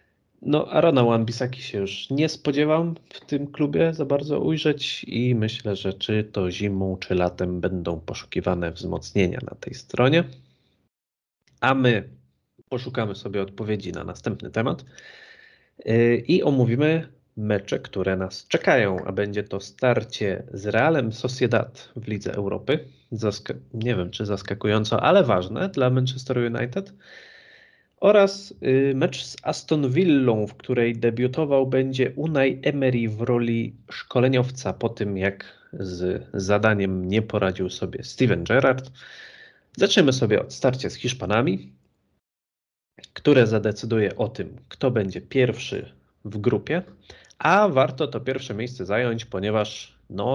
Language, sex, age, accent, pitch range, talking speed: Polish, male, 30-49, native, 100-130 Hz, 130 wpm